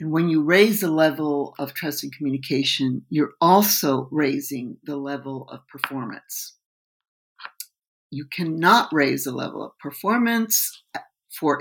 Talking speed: 130 wpm